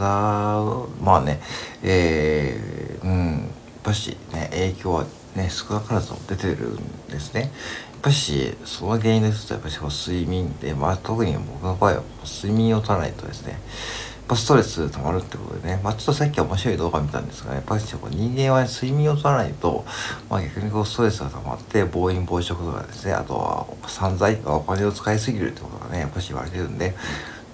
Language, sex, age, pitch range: Japanese, male, 60-79, 85-115 Hz